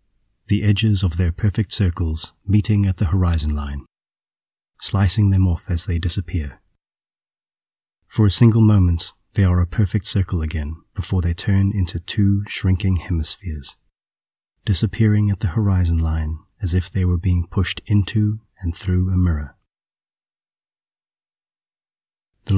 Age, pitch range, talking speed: 30-49, 85-105 Hz, 135 wpm